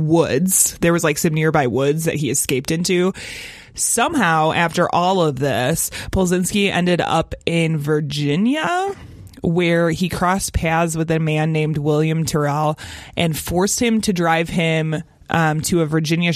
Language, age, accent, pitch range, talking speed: English, 20-39, American, 155-180 Hz, 150 wpm